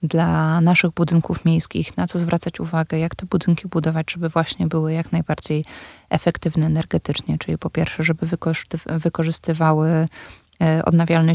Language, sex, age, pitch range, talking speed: Polish, female, 20-39, 155-170 Hz, 130 wpm